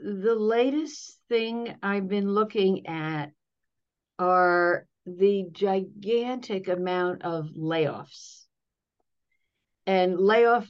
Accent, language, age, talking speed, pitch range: American, English, 60-79, 85 wpm, 180-220 Hz